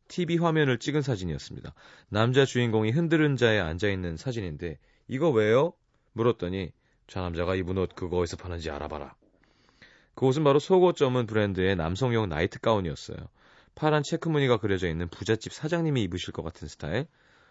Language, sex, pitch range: Korean, male, 95-140 Hz